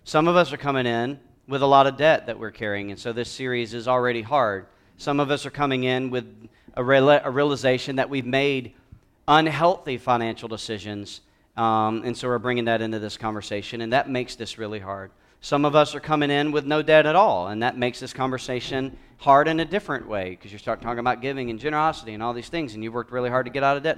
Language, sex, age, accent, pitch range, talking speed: English, male, 40-59, American, 115-145 Hz, 240 wpm